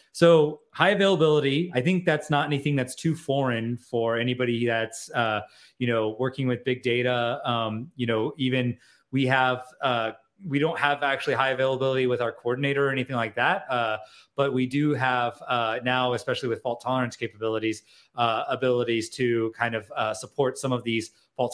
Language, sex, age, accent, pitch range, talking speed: English, male, 30-49, American, 115-135 Hz, 180 wpm